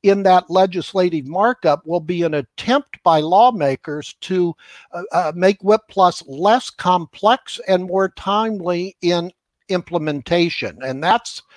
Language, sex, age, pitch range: English, male, 60-79, 145-185 Hz